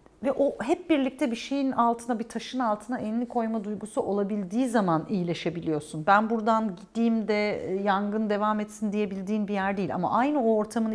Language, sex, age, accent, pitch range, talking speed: Turkish, female, 50-69, native, 185-240 Hz, 165 wpm